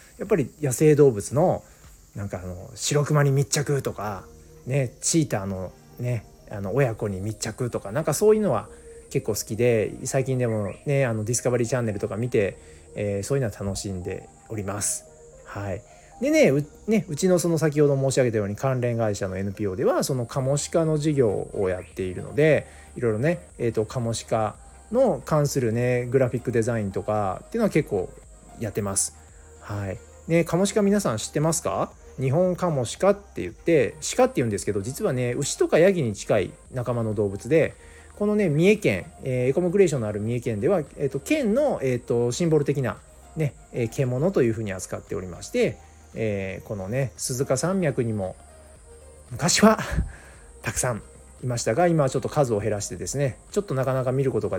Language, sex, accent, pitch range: Japanese, male, native, 100-145 Hz